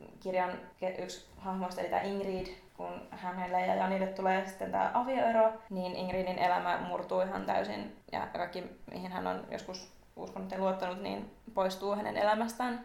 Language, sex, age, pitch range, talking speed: Finnish, female, 20-39, 185-210 Hz, 155 wpm